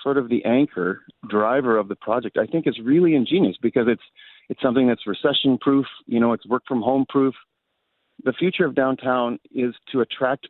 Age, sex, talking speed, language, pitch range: 40-59, male, 195 wpm, English, 120-160 Hz